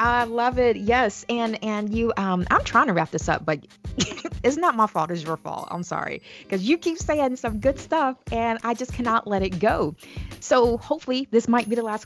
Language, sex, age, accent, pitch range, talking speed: English, female, 20-39, American, 160-200 Hz, 225 wpm